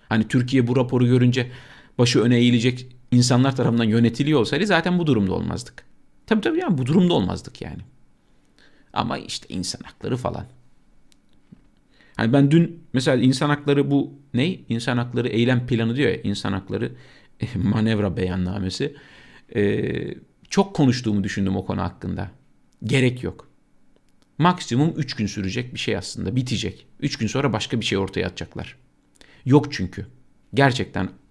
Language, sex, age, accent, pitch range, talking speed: Turkish, male, 50-69, native, 110-145 Hz, 140 wpm